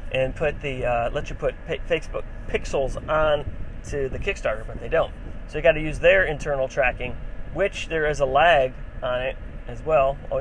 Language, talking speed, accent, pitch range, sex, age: English, 190 wpm, American, 105-145 Hz, male, 30-49